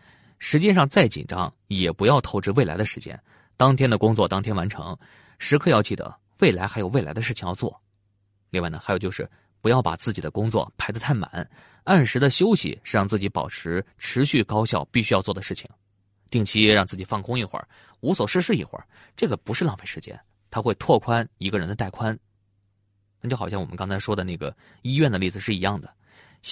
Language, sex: Chinese, male